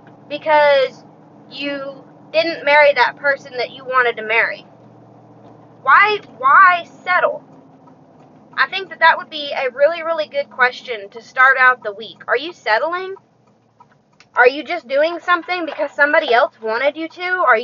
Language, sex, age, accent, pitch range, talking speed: English, female, 20-39, American, 245-310 Hz, 155 wpm